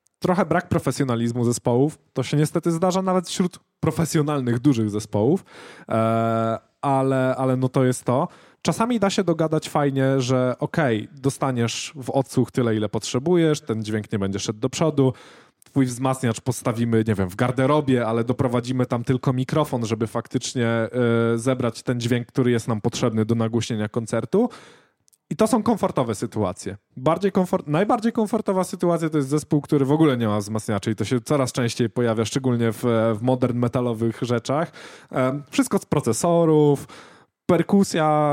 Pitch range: 120-160 Hz